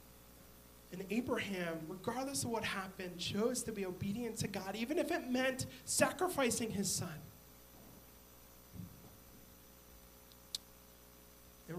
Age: 30-49